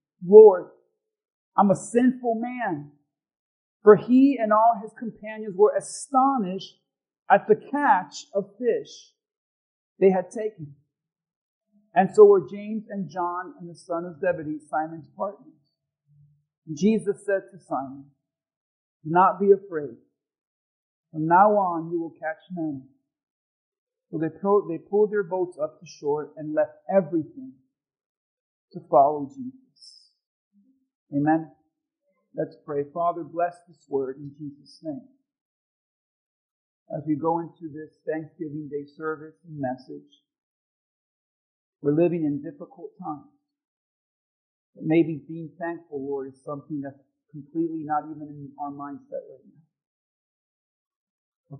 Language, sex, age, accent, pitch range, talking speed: English, male, 50-69, American, 150-210 Hz, 125 wpm